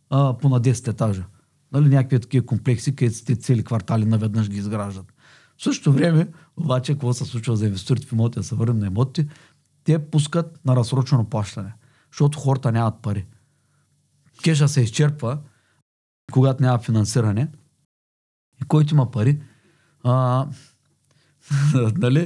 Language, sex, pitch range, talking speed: Bulgarian, male, 115-145 Hz, 135 wpm